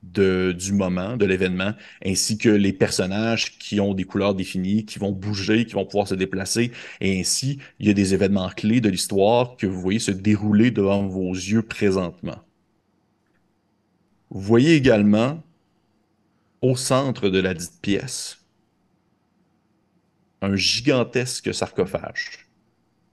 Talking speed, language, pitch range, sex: 140 wpm, French, 100-125 Hz, male